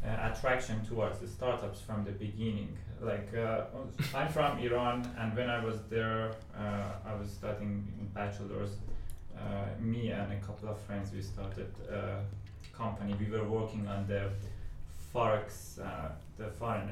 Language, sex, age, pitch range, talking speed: English, male, 20-39, 100-115 Hz, 155 wpm